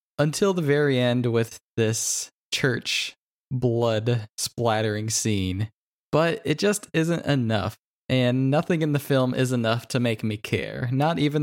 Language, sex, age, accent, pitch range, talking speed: English, male, 20-39, American, 115-145 Hz, 145 wpm